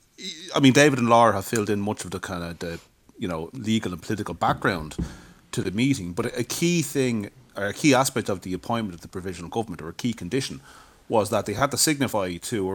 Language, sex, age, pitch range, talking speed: English, male, 30-49, 90-125 Hz, 235 wpm